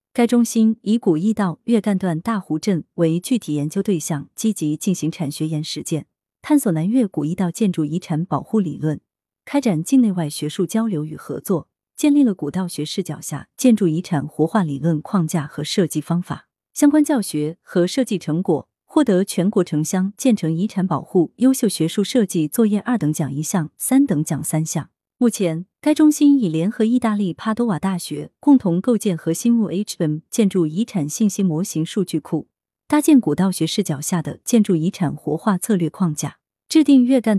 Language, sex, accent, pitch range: Chinese, female, native, 155-220 Hz